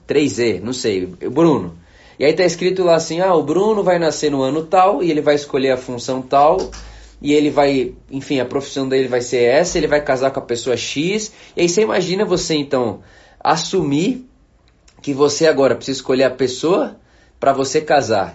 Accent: Brazilian